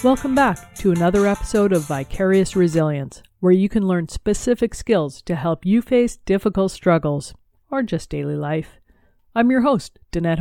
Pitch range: 170-220 Hz